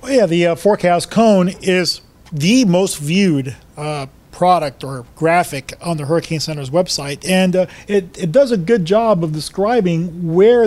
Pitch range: 150-185 Hz